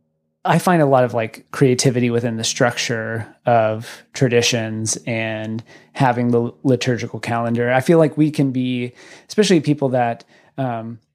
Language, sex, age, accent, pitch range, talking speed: English, male, 30-49, American, 115-140 Hz, 145 wpm